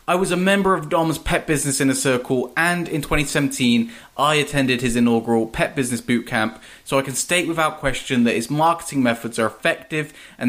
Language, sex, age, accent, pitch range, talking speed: English, male, 20-39, British, 120-160 Hz, 195 wpm